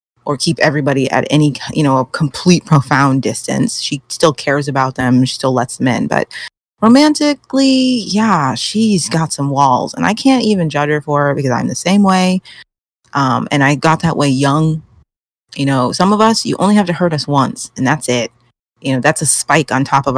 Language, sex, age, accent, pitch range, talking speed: English, female, 30-49, American, 130-165 Hz, 210 wpm